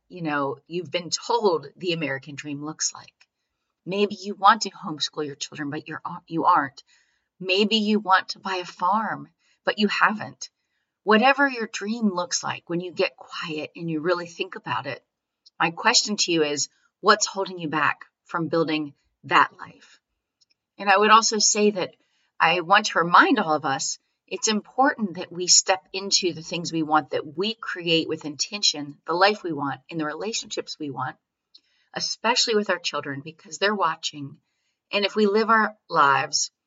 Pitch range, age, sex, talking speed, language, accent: 155-200 Hz, 40-59, female, 180 wpm, English, American